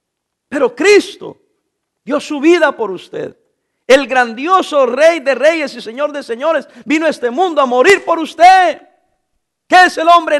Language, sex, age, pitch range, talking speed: English, male, 50-69, 200-315 Hz, 160 wpm